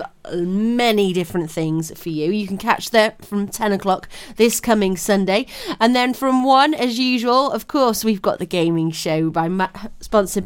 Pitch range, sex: 170-220 Hz, female